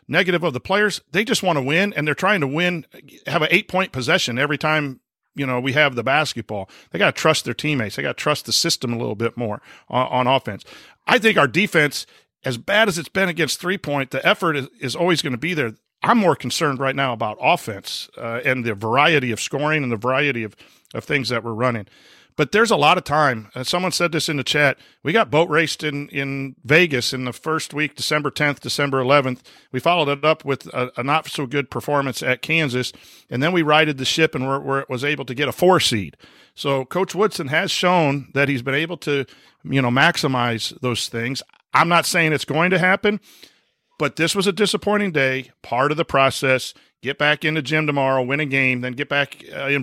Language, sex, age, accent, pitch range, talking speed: English, male, 50-69, American, 130-165 Hz, 225 wpm